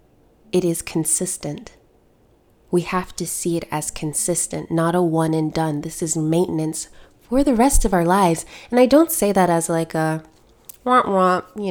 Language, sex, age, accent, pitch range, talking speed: English, female, 20-39, American, 155-180 Hz, 170 wpm